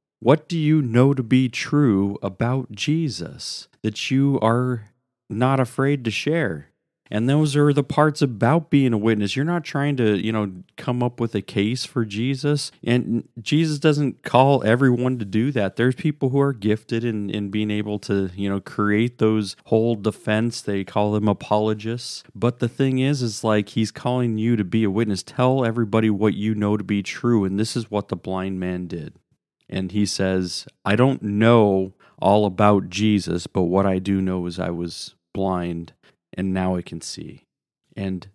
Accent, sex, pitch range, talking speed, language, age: American, male, 100-125 Hz, 185 wpm, English, 40-59